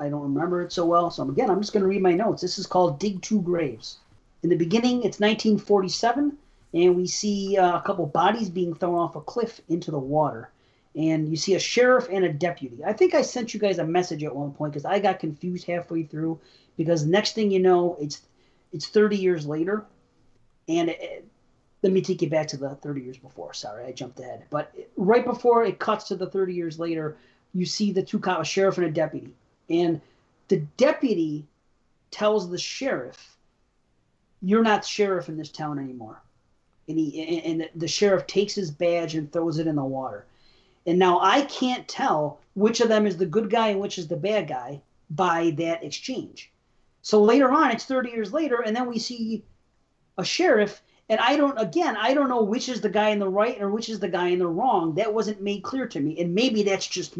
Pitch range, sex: 160-215 Hz, male